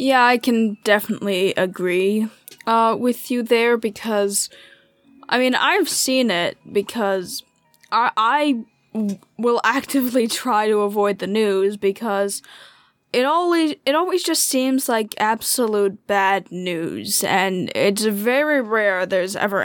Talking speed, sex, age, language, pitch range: 130 wpm, female, 10-29, English, 195-235 Hz